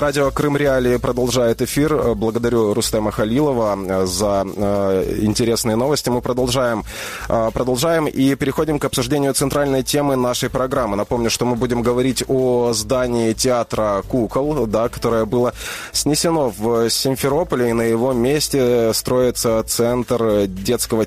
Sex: male